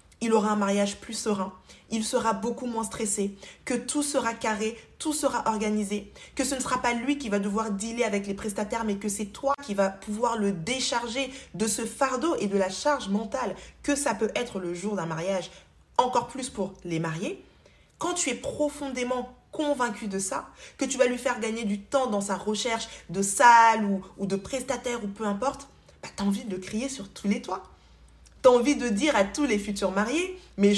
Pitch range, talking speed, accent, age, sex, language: 205-275 Hz, 205 wpm, French, 20-39, female, French